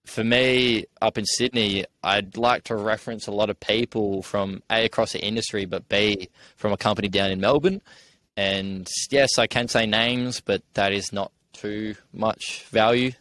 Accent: Australian